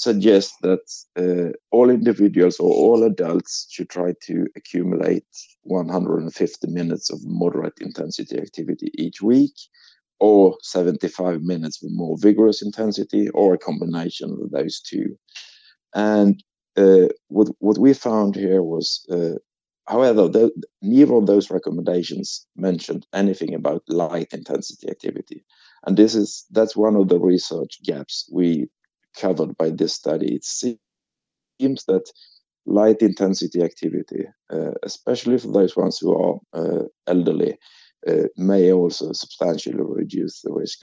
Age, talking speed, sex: 50-69, 130 wpm, male